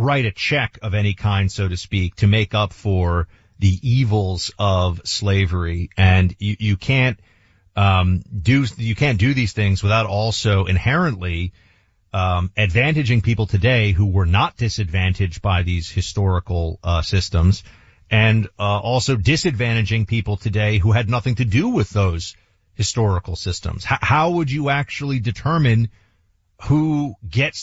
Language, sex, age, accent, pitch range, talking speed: English, male, 40-59, American, 100-125 Hz, 145 wpm